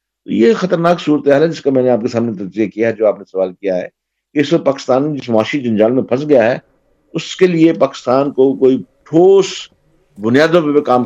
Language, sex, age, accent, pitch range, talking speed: English, male, 50-69, Indian, 110-145 Hz, 180 wpm